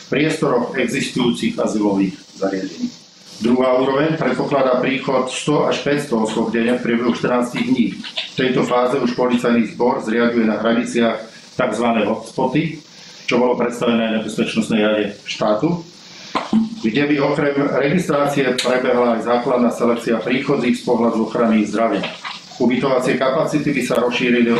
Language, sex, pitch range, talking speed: Slovak, male, 115-145 Hz, 130 wpm